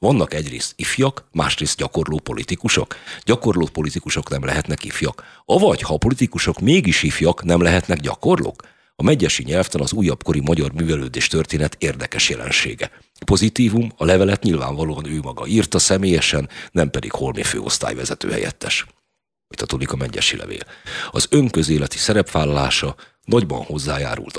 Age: 50-69